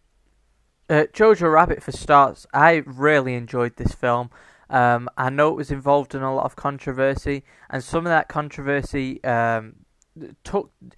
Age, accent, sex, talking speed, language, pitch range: 20-39, British, male, 155 wpm, English, 130-150 Hz